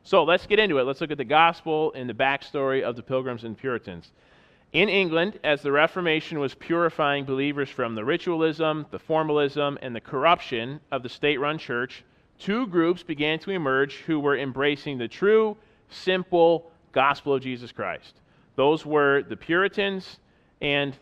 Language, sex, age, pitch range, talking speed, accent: English, male, 40-59, 130-165 Hz, 165 wpm, American